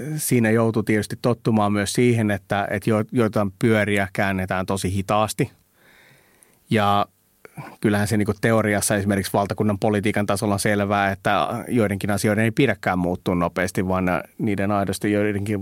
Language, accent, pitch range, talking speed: Finnish, native, 105-120 Hz, 135 wpm